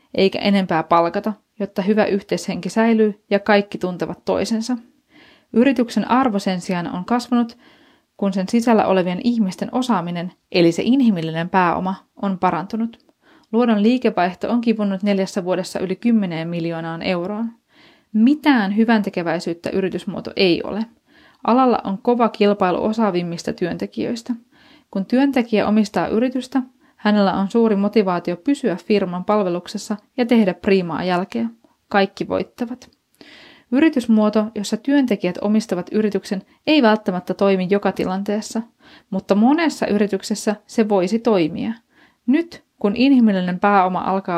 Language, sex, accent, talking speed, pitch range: Finnish, female, native, 120 wpm, 190-245 Hz